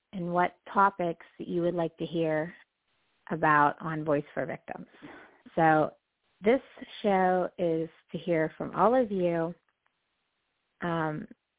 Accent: American